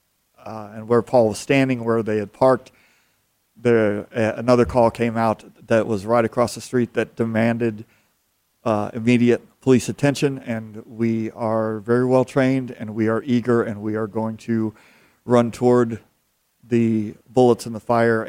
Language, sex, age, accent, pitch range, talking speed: English, male, 40-59, American, 110-125 Hz, 165 wpm